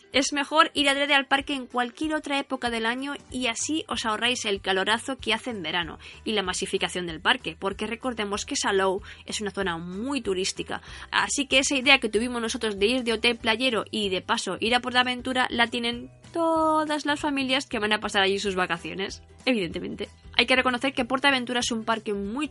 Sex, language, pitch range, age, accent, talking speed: female, Spanish, 200-265 Hz, 20-39, Spanish, 205 wpm